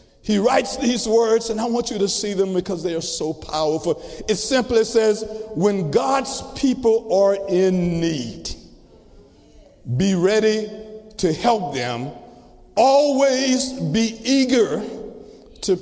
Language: English